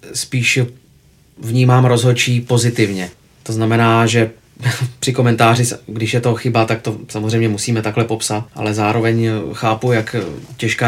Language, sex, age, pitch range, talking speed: Czech, male, 30-49, 115-130 Hz, 130 wpm